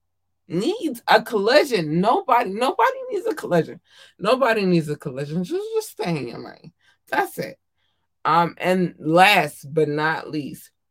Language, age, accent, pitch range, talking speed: English, 20-39, American, 155-230 Hz, 145 wpm